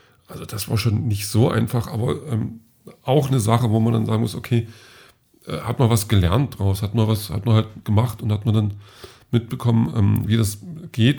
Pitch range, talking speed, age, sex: 105-120 Hz, 215 wpm, 40-59, male